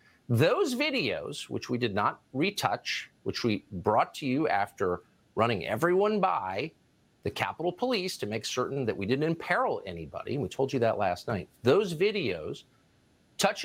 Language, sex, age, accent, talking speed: English, male, 50-69, American, 160 wpm